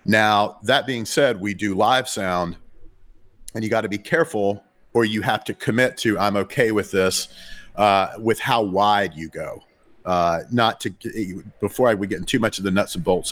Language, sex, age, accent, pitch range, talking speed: English, male, 40-59, American, 90-115 Hz, 200 wpm